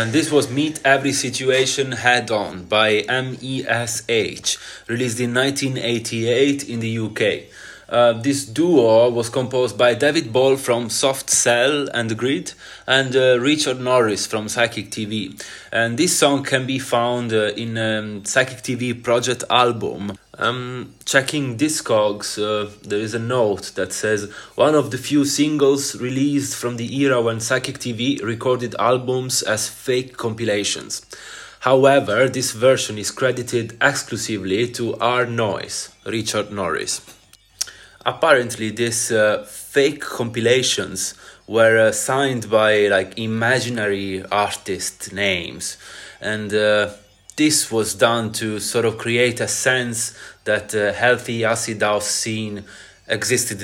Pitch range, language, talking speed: 110-130 Hz, English, 130 wpm